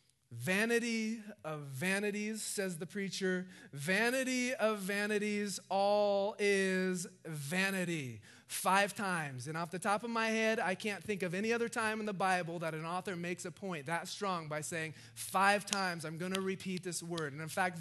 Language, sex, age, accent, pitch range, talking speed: English, male, 30-49, American, 115-190 Hz, 175 wpm